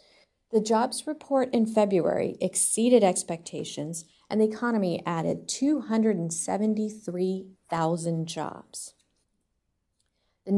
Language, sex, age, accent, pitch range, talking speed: English, female, 40-59, American, 165-210 Hz, 80 wpm